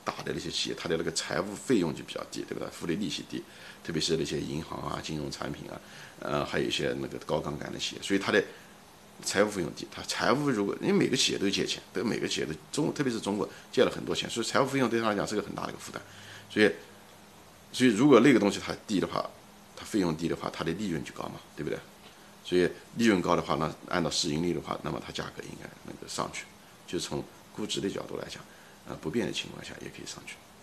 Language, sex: Chinese, male